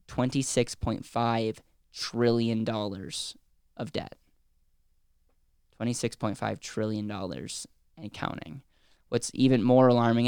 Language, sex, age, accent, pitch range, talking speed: English, male, 10-29, American, 110-120 Hz, 80 wpm